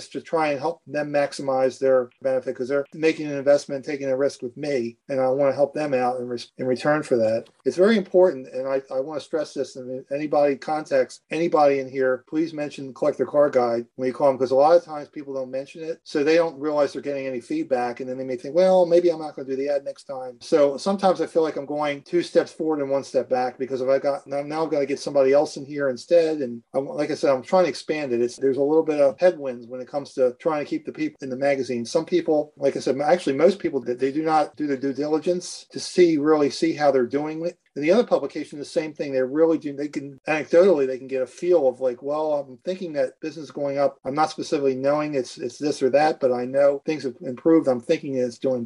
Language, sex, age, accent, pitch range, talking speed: English, male, 40-59, American, 130-160 Hz, 270 wpm